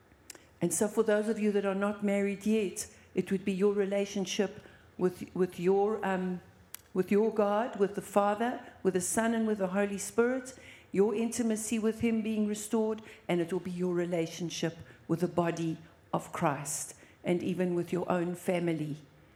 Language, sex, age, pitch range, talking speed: English, female, 60-79, 170-200 Hz, 175 wpm